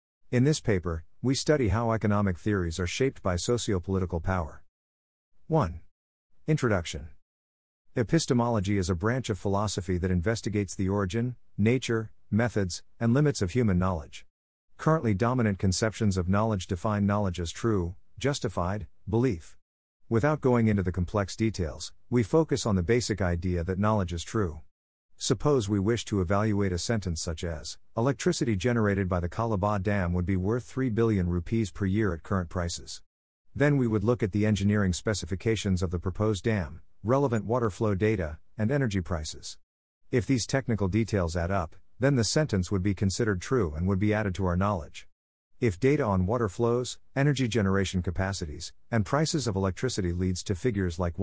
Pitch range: 90-115 Hz